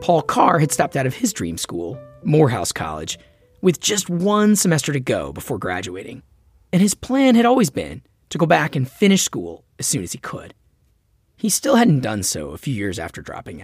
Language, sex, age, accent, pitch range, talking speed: English, male, 30-49, American, 115-190 Hz, 200 wpm